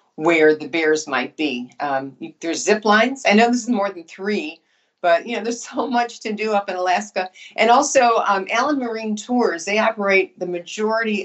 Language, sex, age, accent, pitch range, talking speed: English, female, 50-69, American, 170-215 Hz, 195 wpm